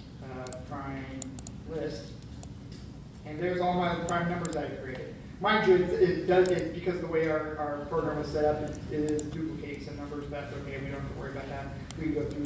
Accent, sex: American, male